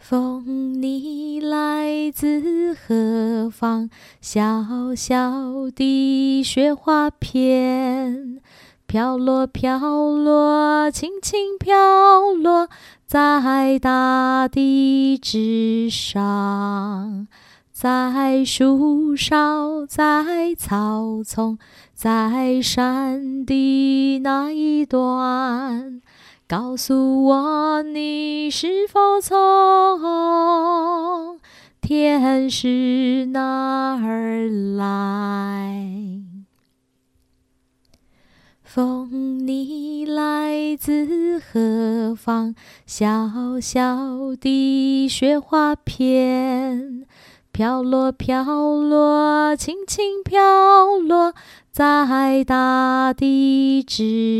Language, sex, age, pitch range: Chinese, female, 20-39, 240-300 Hz